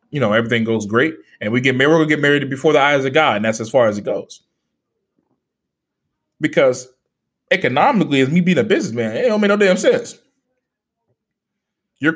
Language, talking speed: English, 195 wpm